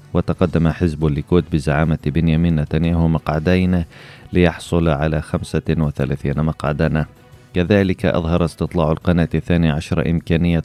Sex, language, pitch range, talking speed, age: male, Arabic, 80-85 Hz, 100 wpm, 30-49